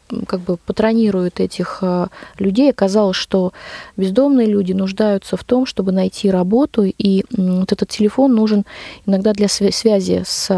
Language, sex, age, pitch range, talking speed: Russian, female, 20-39, 185-215 Hz, 140 wpm